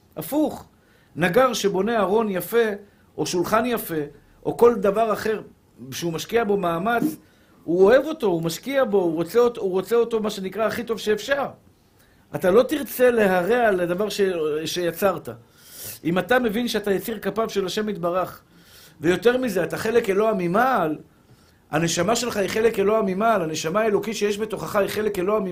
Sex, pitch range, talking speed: male, 155-220 Hz, 160 wpm